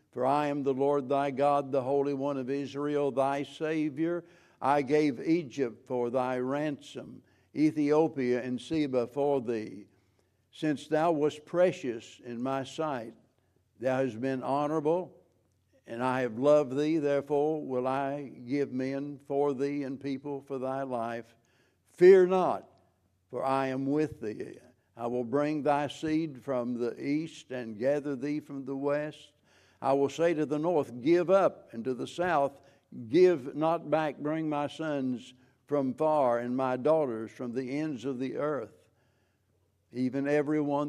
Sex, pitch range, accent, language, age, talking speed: male, 125-145 Hz, American, English, 60-79, 155 wpm